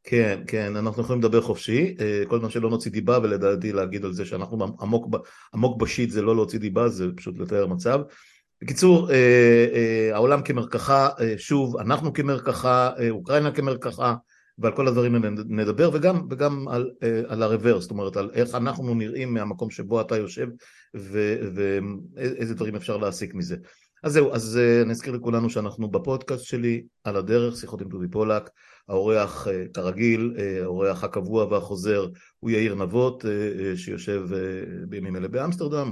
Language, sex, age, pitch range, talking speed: Hebrew, male, 50-69, 100-125 Hz, 145 wpm